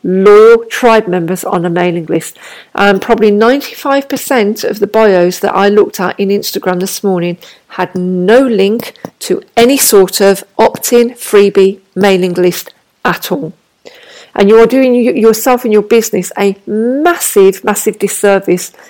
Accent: British